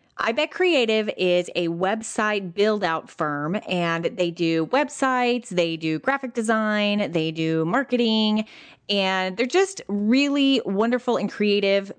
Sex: female